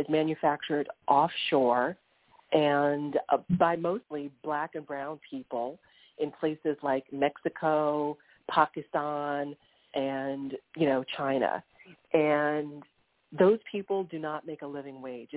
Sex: female